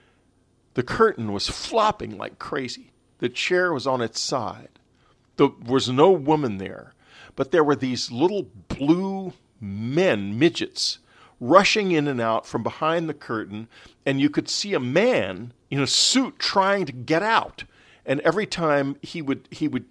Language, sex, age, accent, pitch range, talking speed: English, male, 50-69, American, 115-160 Hz, 155 wpm